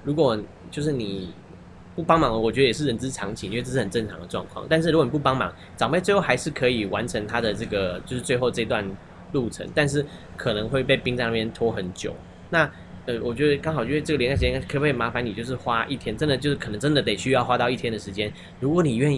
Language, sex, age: Chinese, male, 10-29